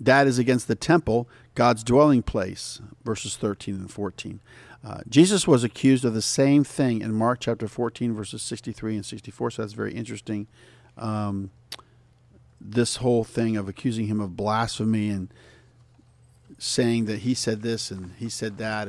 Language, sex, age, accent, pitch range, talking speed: English, male, 50-69, American, 100-120 Hz, 160 wpm